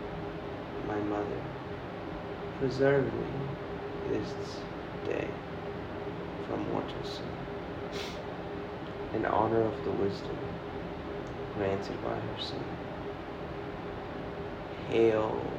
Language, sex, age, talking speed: English, male, 30-49, 70 wpm